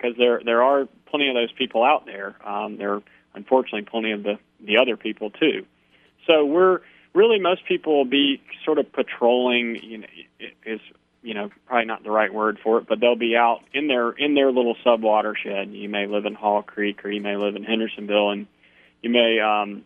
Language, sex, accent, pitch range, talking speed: English, male, American, 105-120 Hz, 210 wpm